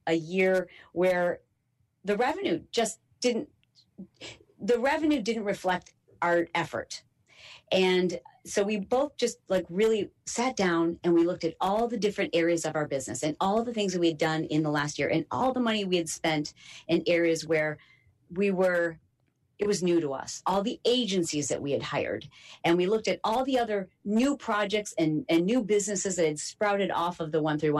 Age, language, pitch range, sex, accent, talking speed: 40-59, English, 160-215 Hz, female, American, 195 wpm